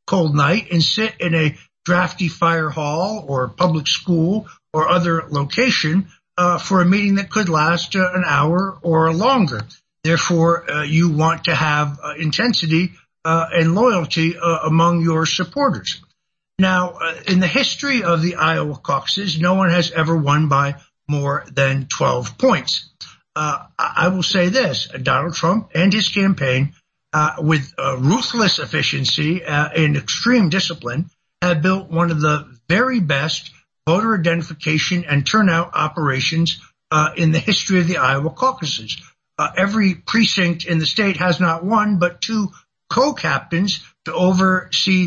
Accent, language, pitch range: American, English, 155-185 Hz